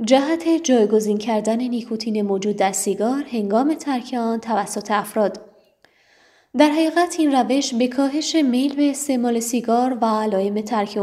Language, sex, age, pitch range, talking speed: Persian, female, 20-39, 220-290 Hz, 130 wpm